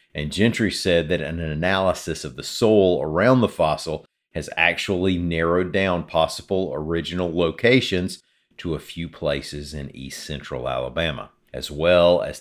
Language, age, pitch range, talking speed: English, 40-59, 80-95 Hz, 140 wpm